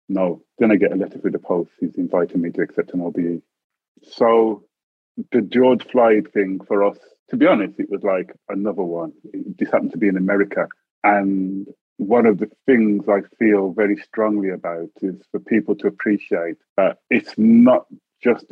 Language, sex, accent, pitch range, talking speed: English, male, British, 95-115 Hz, 180 wpm